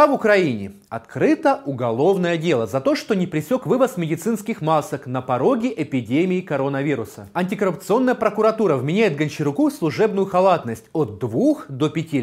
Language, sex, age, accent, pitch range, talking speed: Russian, male, 30-49, native, 150-225 Hz, 135 wpm